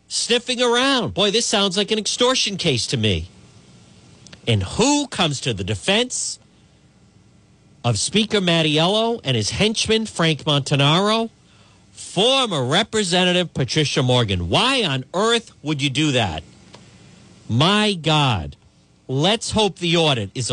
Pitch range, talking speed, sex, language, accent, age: 115-175 Hz, 125 wpm, male, English, American, 50-69